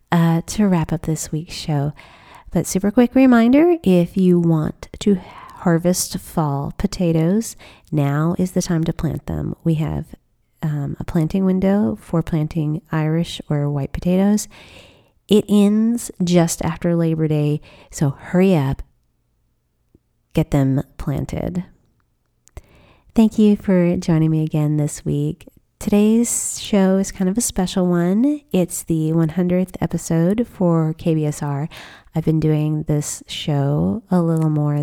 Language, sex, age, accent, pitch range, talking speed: English, female, 30-49, American, 150-185 Hz, 135 wpm